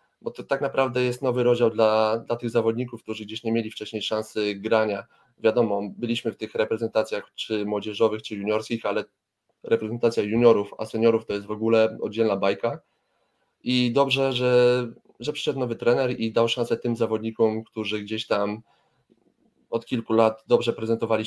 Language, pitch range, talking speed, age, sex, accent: Polish, 105-120 Hz, 165 wpm, 20-39, male, native